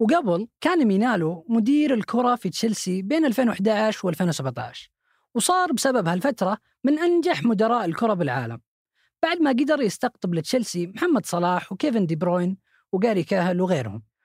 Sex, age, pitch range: female, 30-49, 175-265 Hz